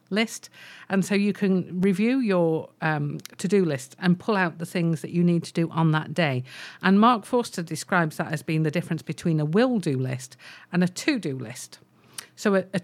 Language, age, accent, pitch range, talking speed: English, 50-69, British, 150-195 Hz, 200 wpm